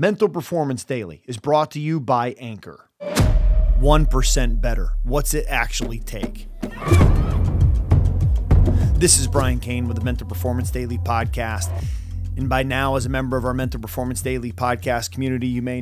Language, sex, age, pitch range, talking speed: English, male, 30-49, 110-140 Hz, 150 wpm